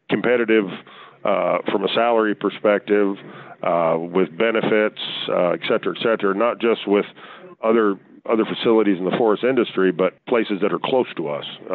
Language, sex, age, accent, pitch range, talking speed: English, male, 50-69, American, 90-105 Hz, 160 wpm